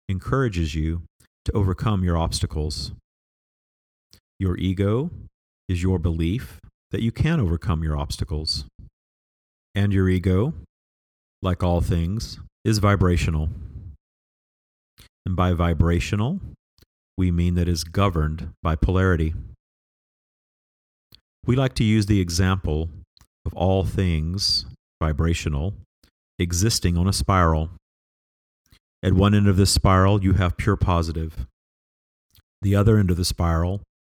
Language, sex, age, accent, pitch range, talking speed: English, male, 40-59, American, 80-100 Hz, 115 wpm